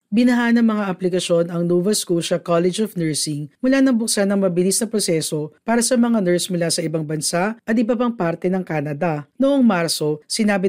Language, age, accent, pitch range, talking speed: Filipino, 50-69, native, 160-225 Hz, 190 wpm